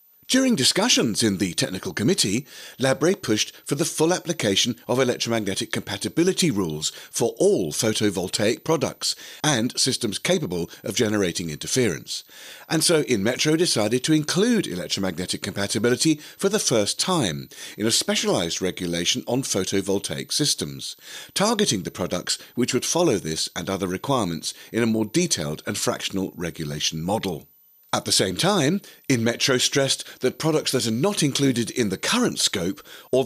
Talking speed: 145 wpm